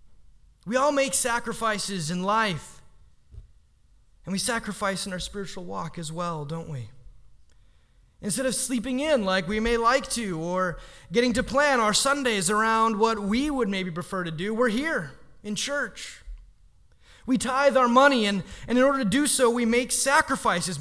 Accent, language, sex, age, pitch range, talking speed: American, English, male, 30-49, 200-270 Hz, 165 wpm